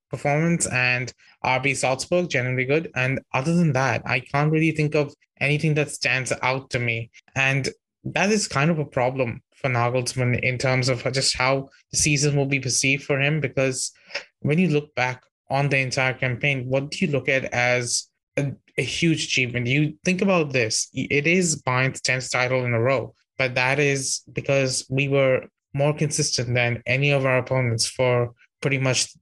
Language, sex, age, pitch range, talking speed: English, male, 20-39, 130-145 Hz, 185 wpm